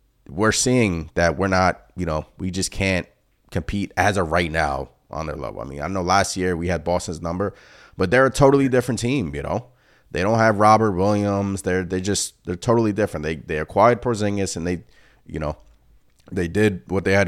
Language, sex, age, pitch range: English, male, 30-49, 85-105 Hz